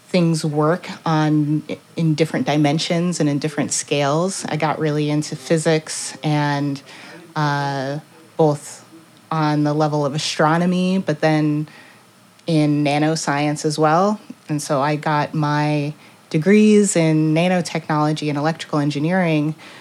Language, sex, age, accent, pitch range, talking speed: English, female, 30-49, American, 150-170 Hz, 120 wpm